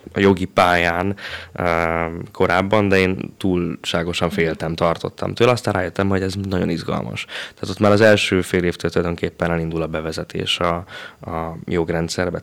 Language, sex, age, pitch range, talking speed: Hungarian, male, 20-39, 85-100 Hz, 145 wpm